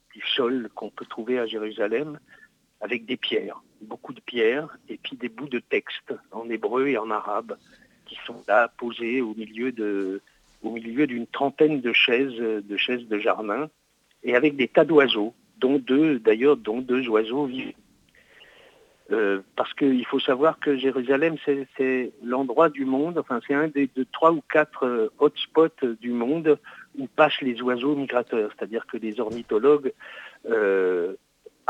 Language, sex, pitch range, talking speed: French, male, 120-165 Hz, 165 wpm